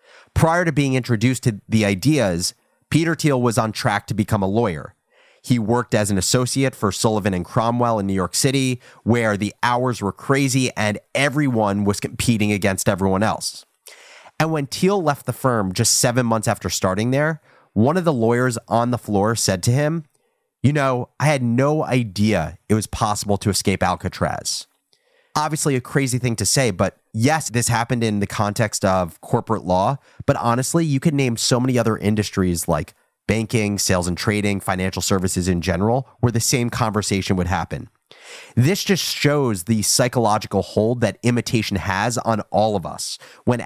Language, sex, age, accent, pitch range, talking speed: English, male, 30-49, American, 100-130 Hz, 175 wpm